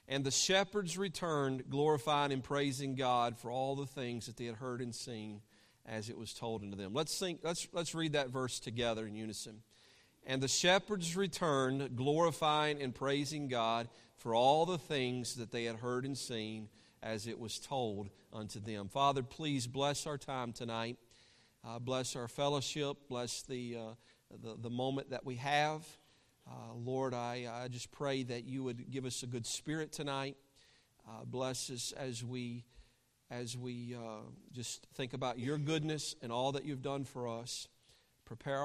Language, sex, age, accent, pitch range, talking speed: English, male, 40-59, American, 120-140 Hz, 175 wpm